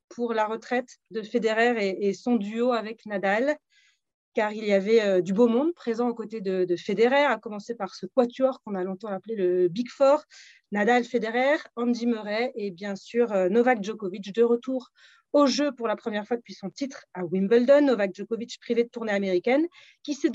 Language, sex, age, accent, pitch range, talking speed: French, female, 30-49, French, 200-255 Hz, 185 wpm